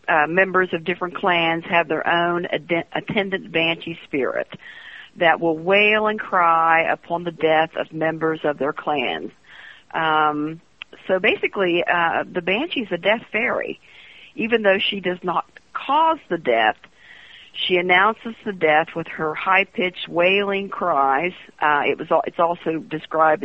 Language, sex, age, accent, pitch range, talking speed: English, female, 50-69, American, 160-190 Hz, 150 wpm